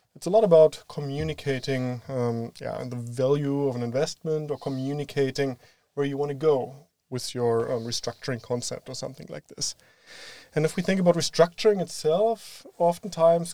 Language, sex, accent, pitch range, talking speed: English, male, German, 130-160 Hz, 165 wpm